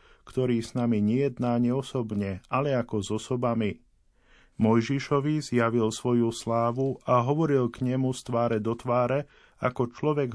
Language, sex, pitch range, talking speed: Slovak, male, 110-130 Hz, 130 wpm